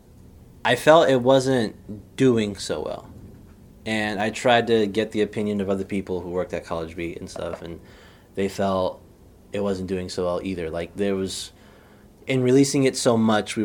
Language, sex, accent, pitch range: English, male, American, 95-110 Hz